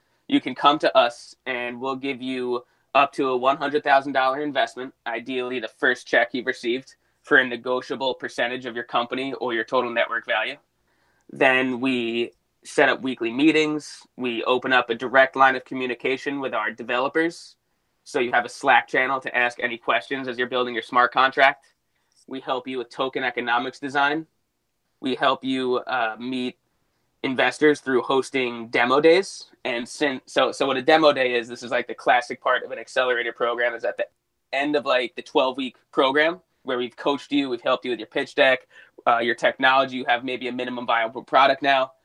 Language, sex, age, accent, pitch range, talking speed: English, male, 20-39, American, 125-145 Hz, 195 wpm